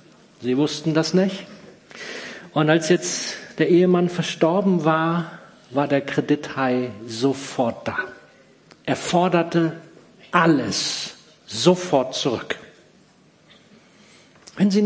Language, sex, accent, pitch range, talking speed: German, male, German, 145-190 Hz, 95 wpm